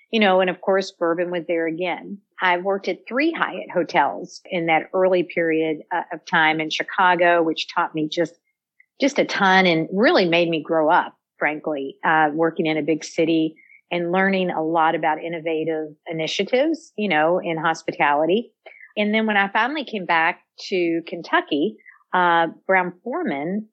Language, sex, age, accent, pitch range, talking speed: English, female, 50-69, American, 160-190 Hz, 165 wpm